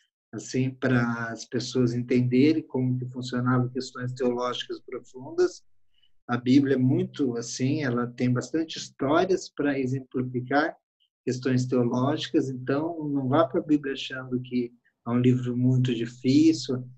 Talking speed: 130 wpm